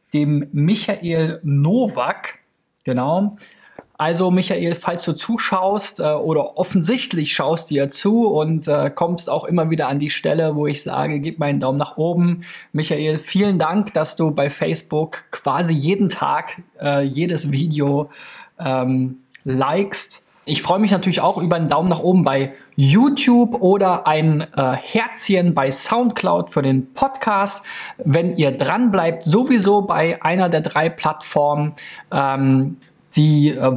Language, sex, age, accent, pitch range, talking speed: German, male, 20-39, German, 140-180 Hz, 140 wpm